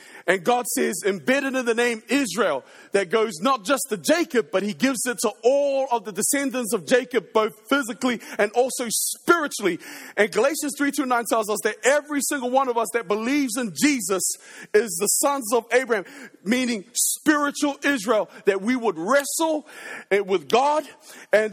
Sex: male